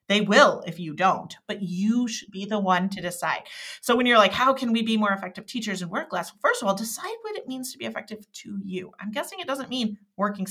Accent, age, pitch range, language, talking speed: American, 30-49, 185-225 Hz, English, 255 wpm